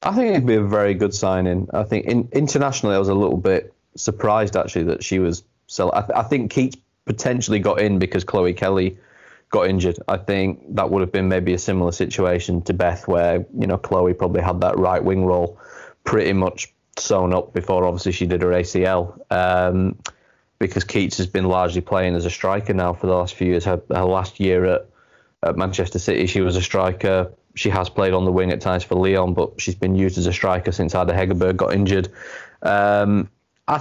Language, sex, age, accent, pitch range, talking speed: English, male, 20-39, British, 90-100 Hz, 210 wpm